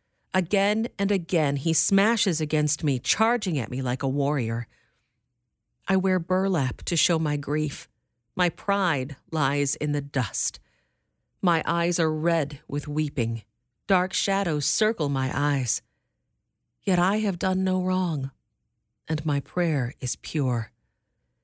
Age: 40-59